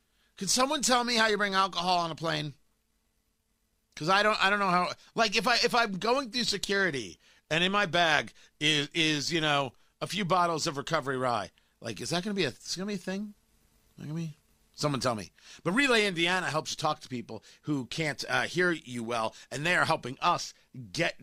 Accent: American